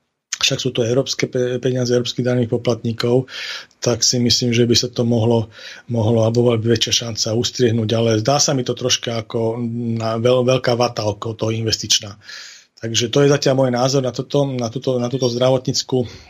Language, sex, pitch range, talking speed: Slovak, male, 120-130 Hz, 160 wpm